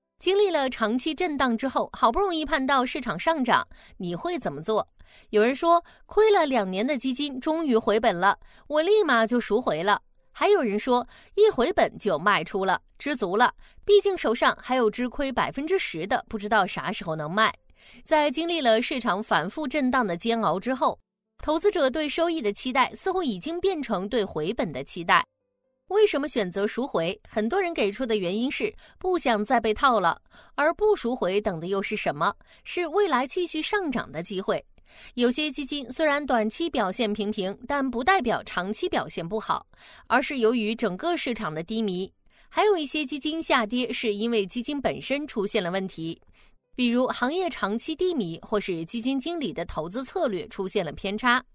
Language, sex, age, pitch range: Chinese, female, 20-39, 210-315 Hz